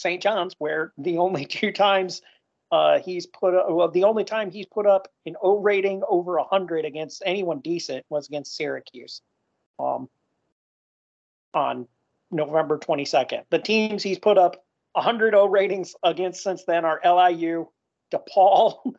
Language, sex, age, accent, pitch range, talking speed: English, male, 40-59, American, 155-195 Hz, 150 wpm